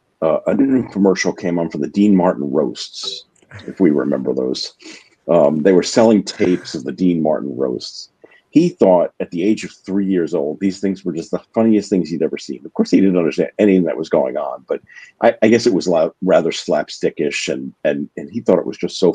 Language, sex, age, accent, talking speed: English, male, 50-69, American, 225 wpm